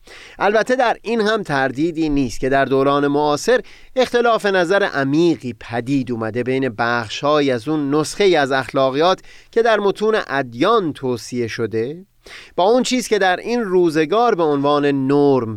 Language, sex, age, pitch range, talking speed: Persian, male, 30-49, 130-185 Hz, 150 wpm